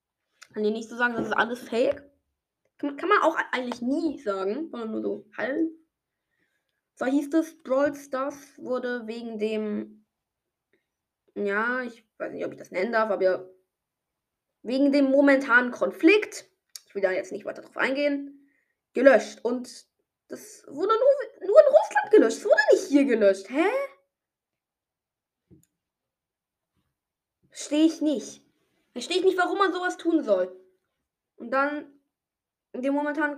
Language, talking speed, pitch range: German, 145 wpm, 215-300 Hz